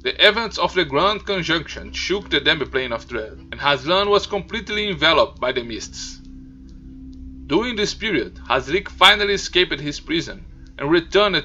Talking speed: 155 wpm